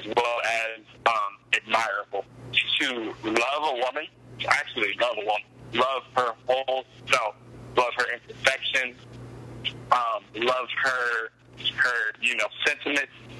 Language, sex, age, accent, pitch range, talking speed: English, male, 30-49, American, 115-130 Hz, 120 wpm